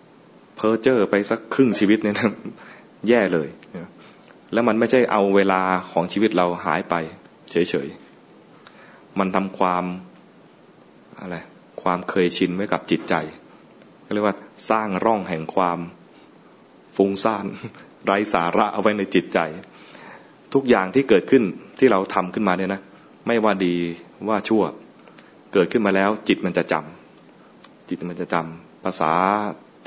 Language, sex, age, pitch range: English, male, 20-39, 90-105 Hz